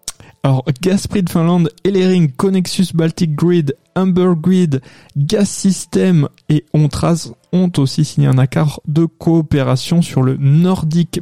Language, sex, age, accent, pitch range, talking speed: French, male, 20-39, French, 140-175 Hz, 130 wpm